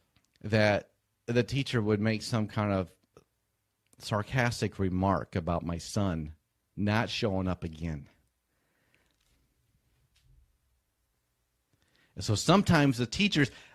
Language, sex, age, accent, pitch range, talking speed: English, male, 40-59, American, 85-135 Hz, 95 wpm